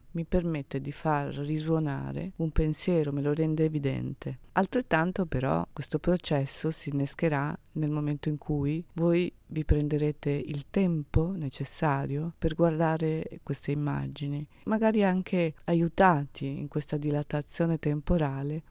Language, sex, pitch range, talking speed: Italian, female, 145-170 Hz, 120 wpm